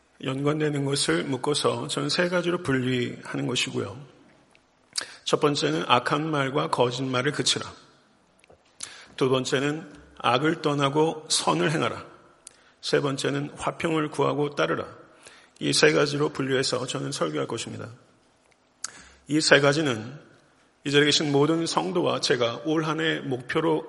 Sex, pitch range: male, 130-155 Hz